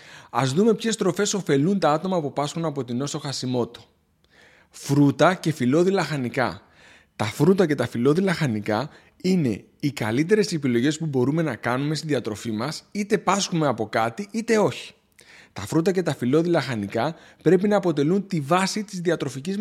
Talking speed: 160 wpm